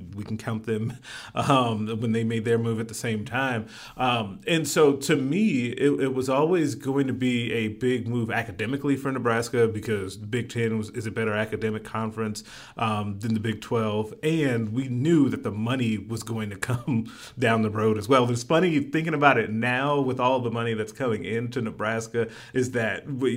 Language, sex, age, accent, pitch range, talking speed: English, male, 30-49, American, 110-135 Hz, 200 wpm